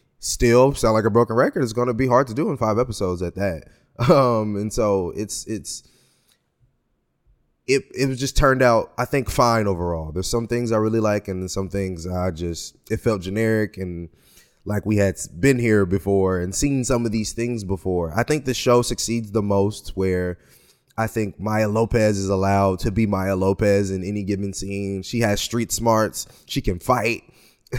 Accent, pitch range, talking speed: American, 95-120 Hz, 190 wpm